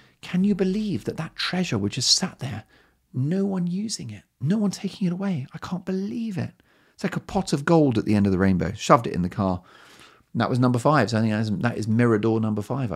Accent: British